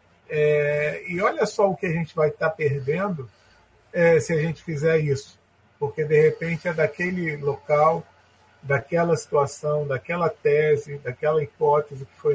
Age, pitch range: 40-59, 130-160 Hz